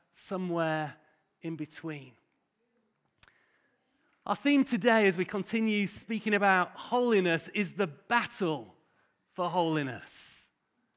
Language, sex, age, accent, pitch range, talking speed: English, male, 40-59, British, 180-230 Hz, 95 wpm